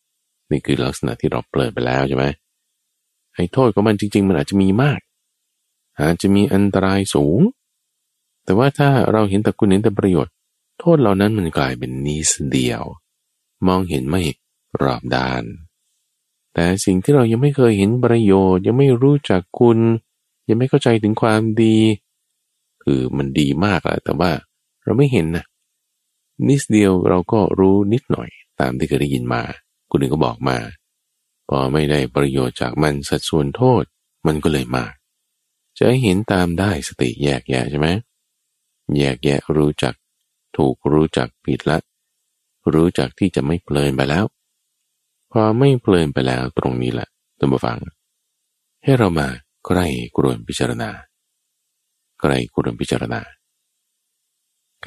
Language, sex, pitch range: Thai, male, 70-110 Hz